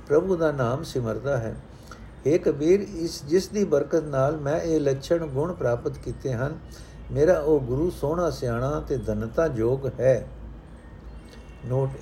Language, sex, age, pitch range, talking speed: Punjabi, male, 60-79, 125-170 Hz, 145 wpm